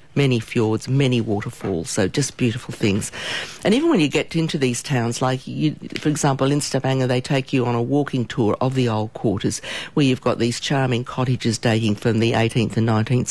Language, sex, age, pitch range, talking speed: English, female, 50-69, 115-140 Hz, 205 wpm